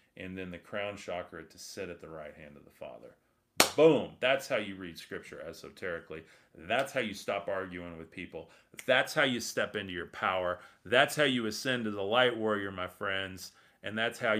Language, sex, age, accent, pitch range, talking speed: English, male, 40-59, American, 95-110 Hz, 200 wpm